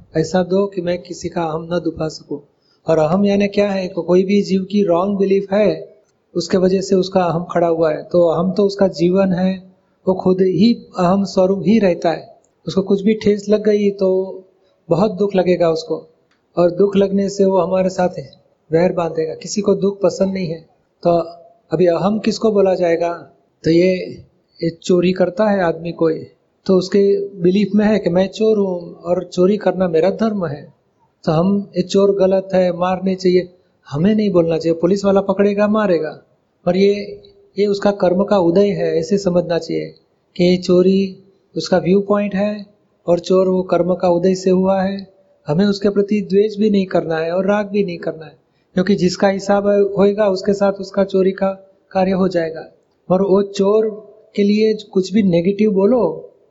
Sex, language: male, Hindi